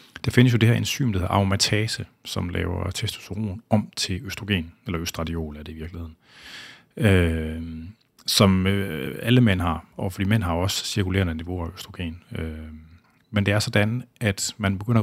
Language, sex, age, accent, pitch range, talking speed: Danish, male, 30-49, native, 90-110 Hz, 175 wpm